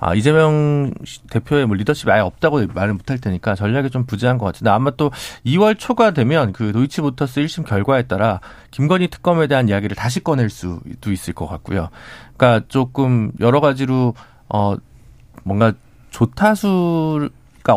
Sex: male